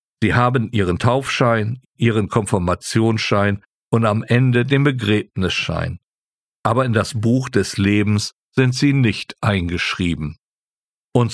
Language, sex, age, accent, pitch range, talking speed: German, male, 50-69, German, 110-135 Hz, 115 wpm